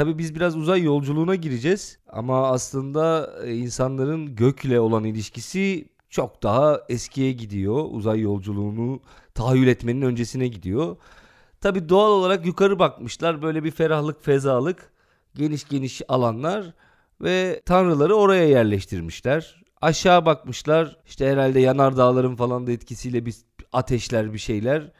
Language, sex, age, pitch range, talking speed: Turkish, male, 40-59, 120-165 Hz, 125 wpm